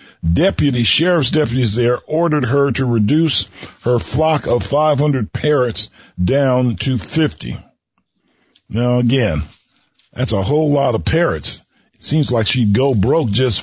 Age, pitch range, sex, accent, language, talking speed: 50-69, 110-150 Hz, male, American, English, 135 wpm